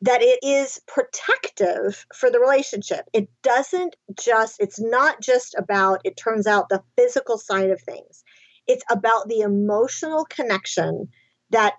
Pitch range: 205-320 Hz